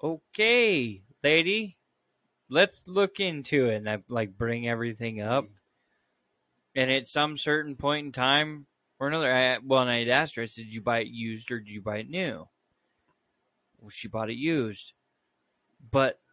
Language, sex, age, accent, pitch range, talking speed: English, male, 20-39, American, 120-160 Hz, 170 wpm